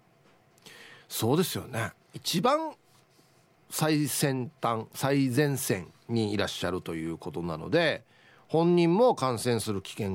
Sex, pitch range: male, 110-170 Hz